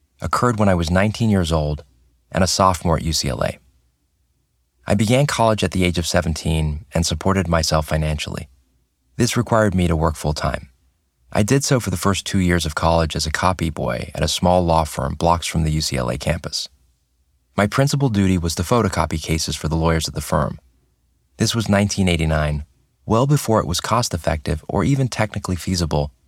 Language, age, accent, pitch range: English, 30-49, American, 75-100 Hz